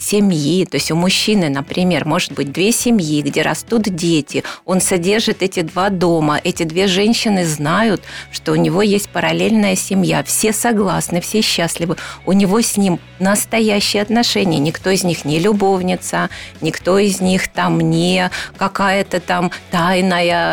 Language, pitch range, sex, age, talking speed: Ukrainian, 165-205 Hz, female, 40-59, 150 wpm